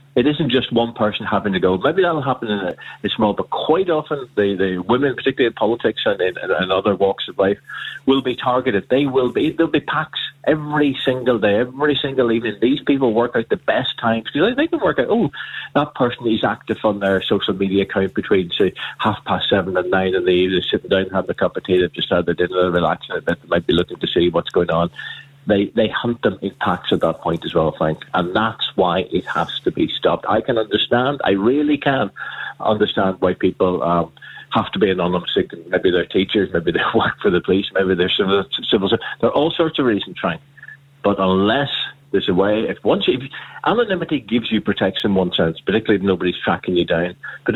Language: English